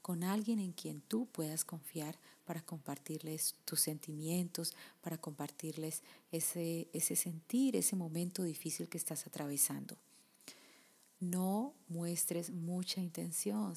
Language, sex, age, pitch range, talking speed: Spanish, female, 30-49, 160-185 Hz, 115 wpm